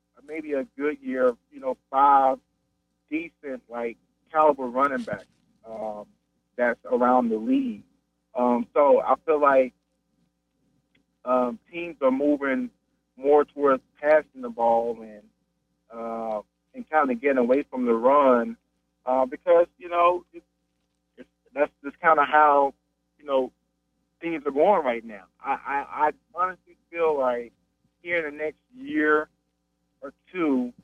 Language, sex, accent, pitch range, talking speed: English, male, American, 120-170 Hz, 140 wpm